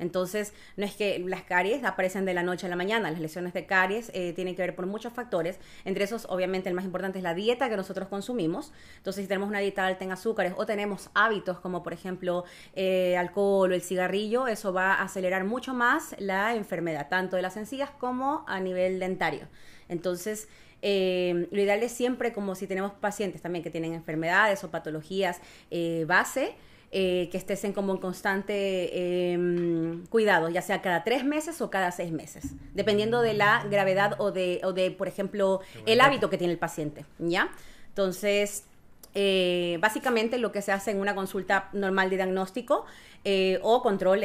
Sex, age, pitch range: female, 30-49, 180-210 Hz